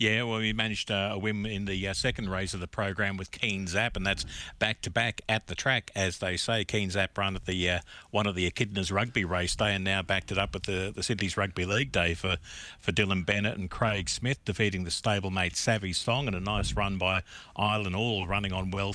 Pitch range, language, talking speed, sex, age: 95-115 Hz, English, 240 wpm, male, 50-69